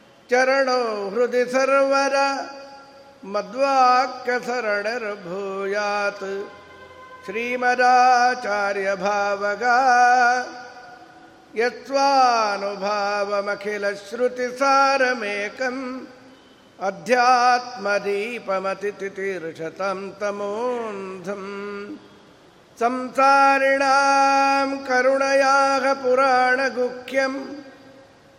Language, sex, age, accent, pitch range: Kannada, male, 50-69, native, 205-270 Hz